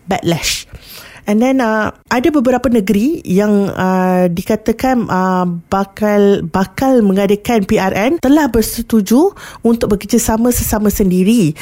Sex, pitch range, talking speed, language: female, 195-235 Hz, 110 wpm, Malay